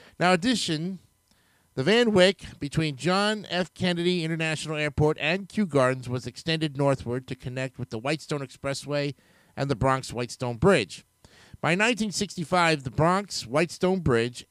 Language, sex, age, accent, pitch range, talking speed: English, male, 50-69, American, 130-170 Hz, 135 wpm